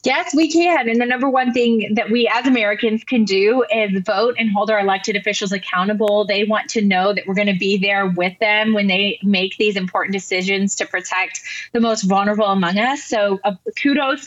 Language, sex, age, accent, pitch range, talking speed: English, female, 20-39, American, 200-230 Hz, 210 wpm